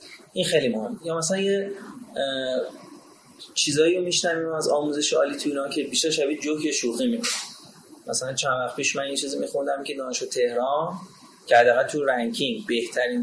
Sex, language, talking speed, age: male, Persian, 155 wpm, 30-49